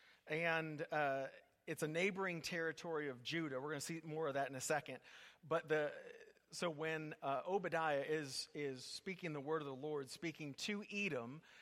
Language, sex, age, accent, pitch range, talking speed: English, male, 40-59, American, 140-170 Hz, 180 wpm